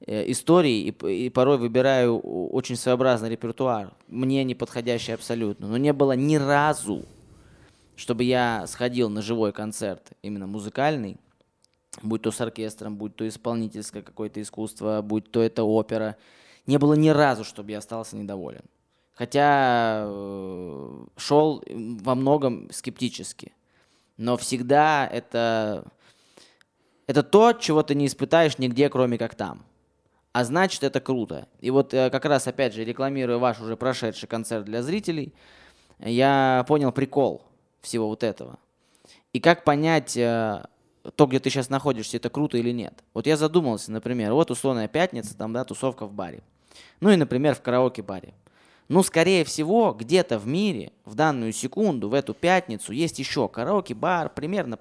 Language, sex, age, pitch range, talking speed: Russian, male, 20-39, 110-140 Hz, 145 wpm